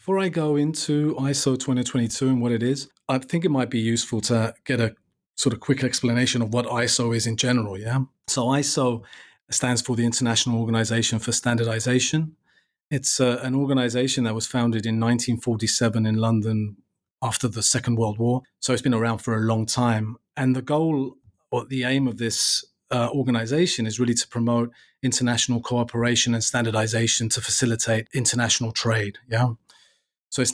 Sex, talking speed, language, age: male, 175 wpm, English, 30-49